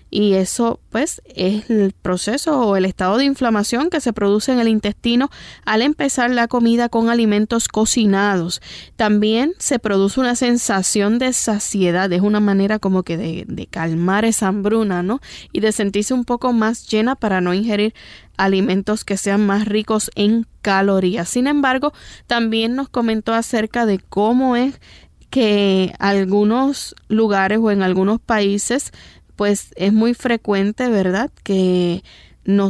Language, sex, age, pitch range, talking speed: Spanish, female, 10-29, 195-235 Hz, 150 wpm